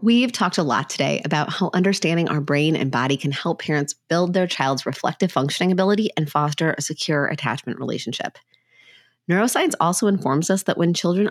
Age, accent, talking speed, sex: 30-49, American, 180 wpm, female